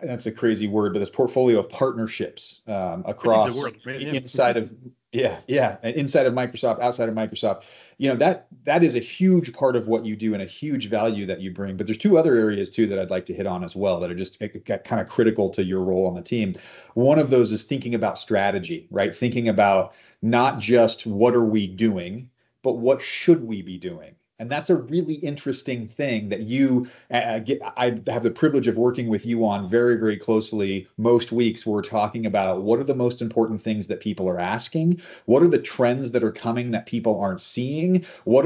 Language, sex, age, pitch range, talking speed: English, male, 30-49, 105-130 Hz, 210 wpm